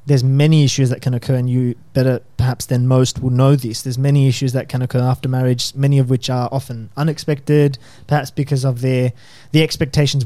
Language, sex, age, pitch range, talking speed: English, male, 20-39, 125-145 Hz, 205 wpm